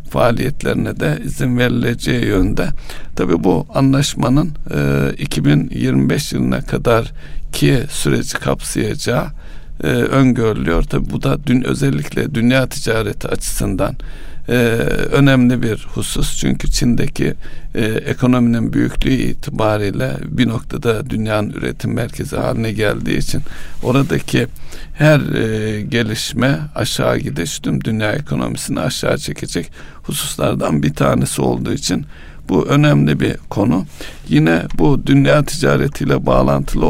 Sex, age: male, 60-79